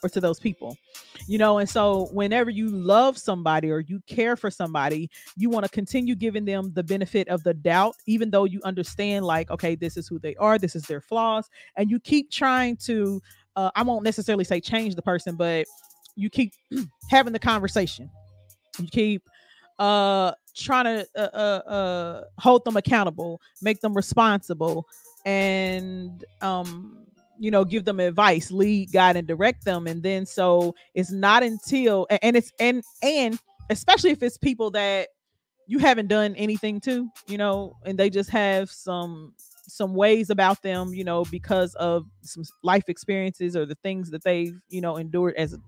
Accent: American